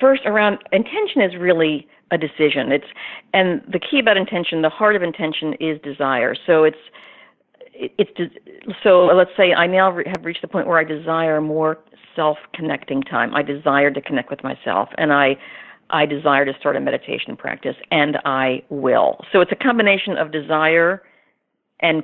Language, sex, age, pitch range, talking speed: English, female, 50-69, 150-205 Hz, 175 wpm